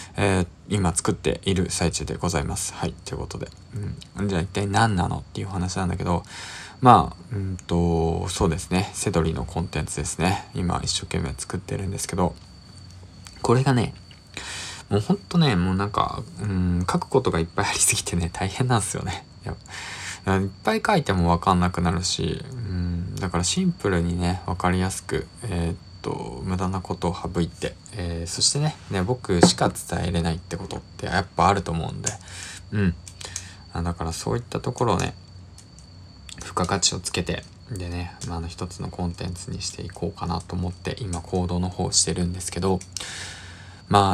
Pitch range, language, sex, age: 85-100 Hz, Japanese, male, 20-39